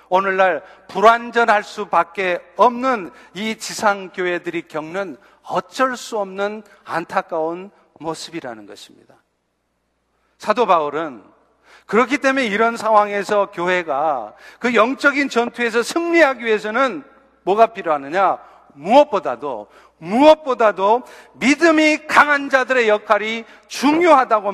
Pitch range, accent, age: 180-255 Hz, native, 50-69